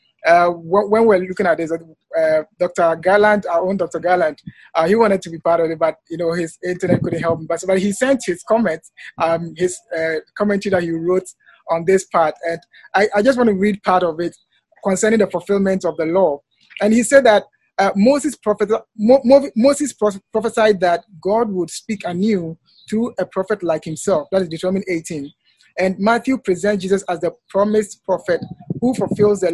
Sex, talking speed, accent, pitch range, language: male, 200 wpm, Nigerian, 170-210 Hz, English